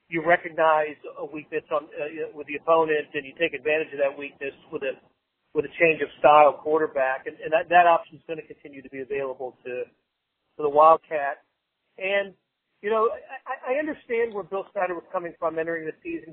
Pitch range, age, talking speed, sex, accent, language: 150-180 Hz, 50-69, 200 wpm, male, American, English